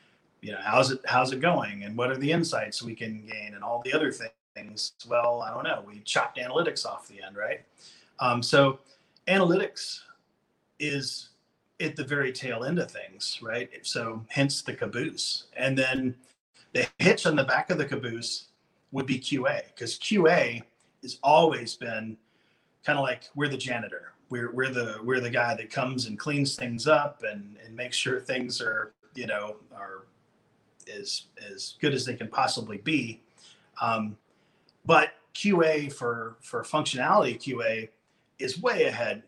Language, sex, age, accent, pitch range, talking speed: English, male, 30-49, American, 115-140 Hz, 165 wpm